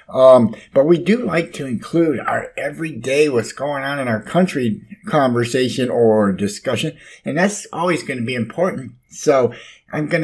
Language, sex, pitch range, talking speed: English, male, 125-175 Hz, 165 wpm